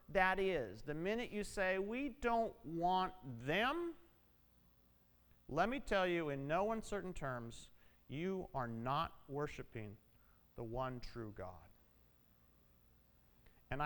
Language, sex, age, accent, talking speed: English, male, 40-59, American, 115 wpm